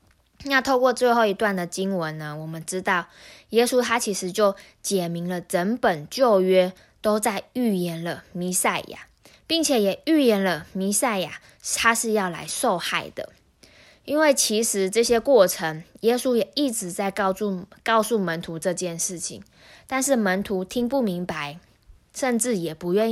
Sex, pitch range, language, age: female, 180-235 Hz, Chinese, 20-39